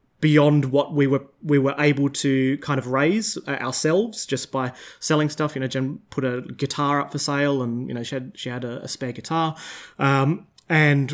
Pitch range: 135-155 Hz